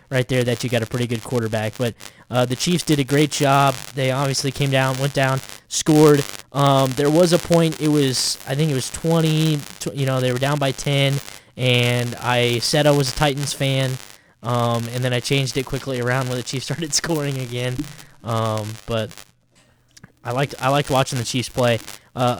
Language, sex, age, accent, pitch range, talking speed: English, male, 10-29, American, 125-150 Hz, 205 wpm